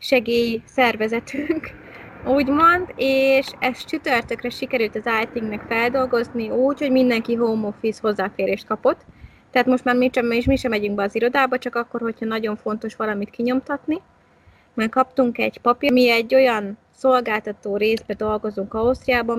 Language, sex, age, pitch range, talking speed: Hungarian, female, 20-39, 190-245 Hz, 140 wpm